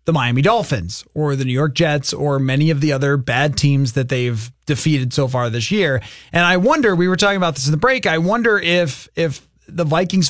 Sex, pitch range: male, 135-175 Hz